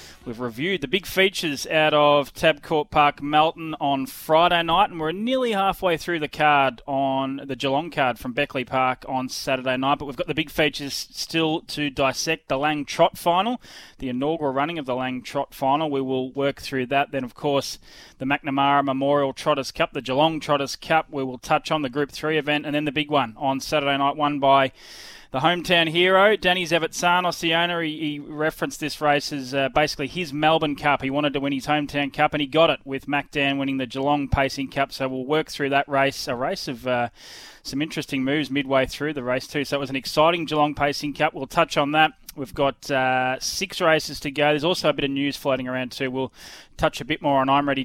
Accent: Australian